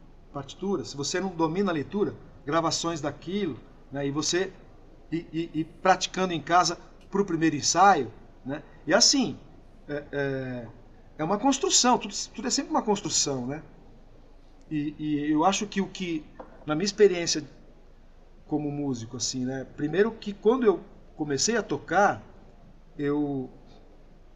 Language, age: Portuguese, 50-69